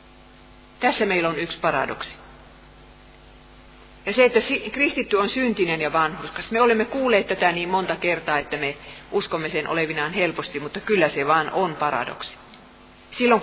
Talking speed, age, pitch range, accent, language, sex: 150 wpm, 40-59, 160-225 Hz, native, Finnish, female